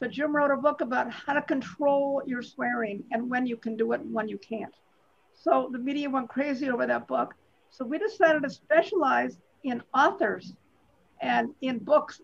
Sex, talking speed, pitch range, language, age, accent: female, 190 wpm, 240-290 Hz, English, 50-69, American